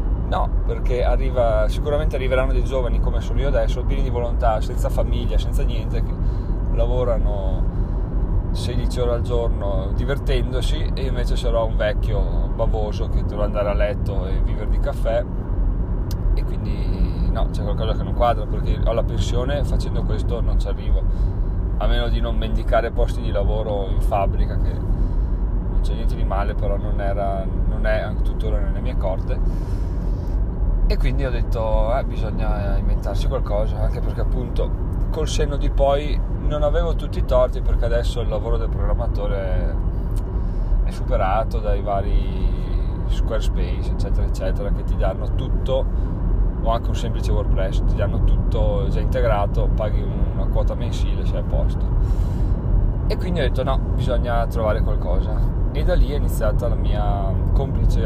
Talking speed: 155 wpm